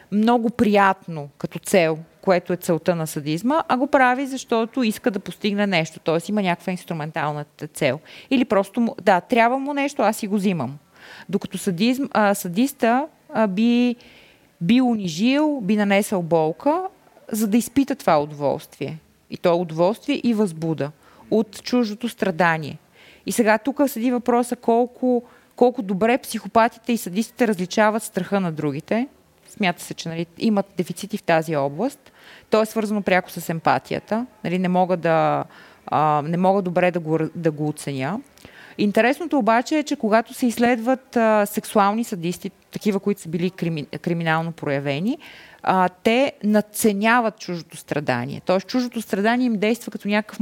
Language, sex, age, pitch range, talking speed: Bulgarian, female, 20-39, 175-235 Hz, 150 wpm